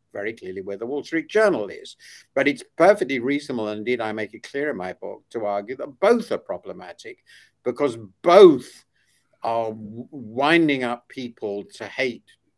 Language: English